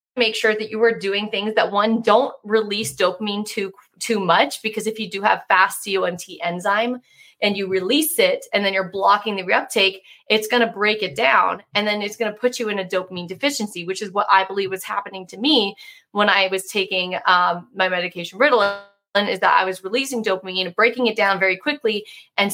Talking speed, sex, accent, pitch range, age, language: 215 wpm, female, American, 190-230 Hz, 20-39, English